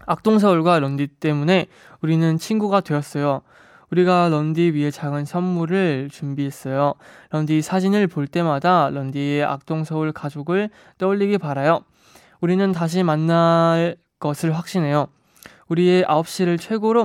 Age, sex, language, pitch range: 20-39, male, Korean, 145-180 Hz